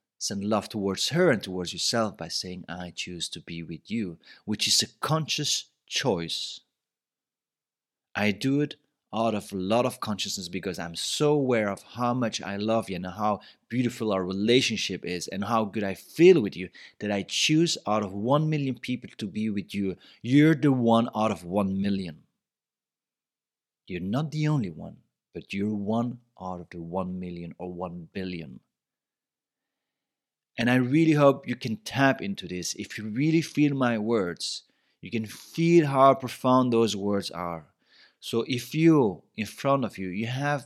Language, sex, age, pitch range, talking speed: English, male, 40-59, 95-130 Hz, 175 wpm